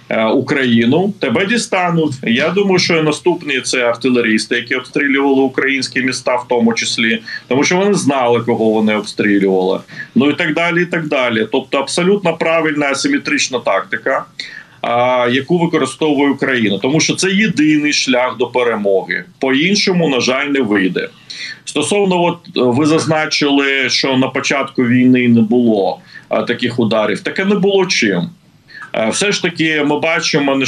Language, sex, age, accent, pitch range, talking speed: Ukrainian, male, 40-59, native, 125-160 Hz, 145 wpm